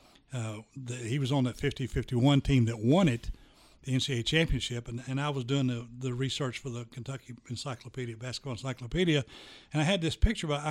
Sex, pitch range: male, 125-170 Hz